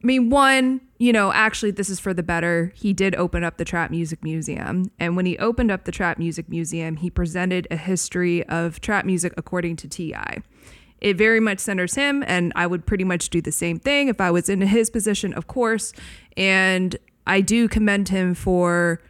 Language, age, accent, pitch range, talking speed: English, 20-39, American, 170-215 Hz, 205 wpm